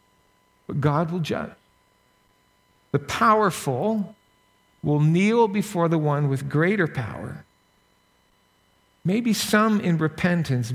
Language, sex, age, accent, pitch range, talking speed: English, male, 50-69, American, 140-175 Hz, 100 wpm